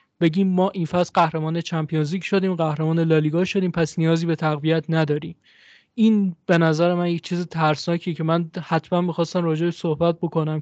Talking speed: 165 wpm